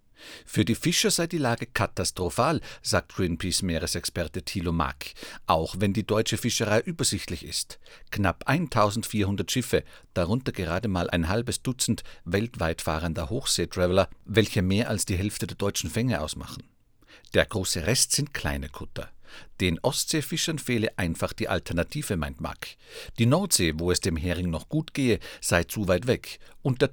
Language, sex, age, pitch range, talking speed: German, male, 50-69, 90-125 Hz, 150 wpm